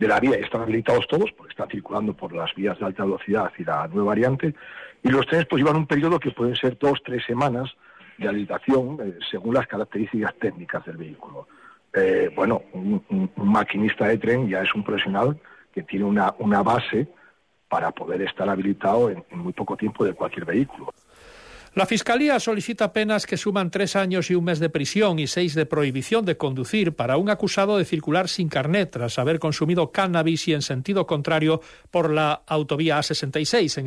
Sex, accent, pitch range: male, Spanish, 145-190 Hz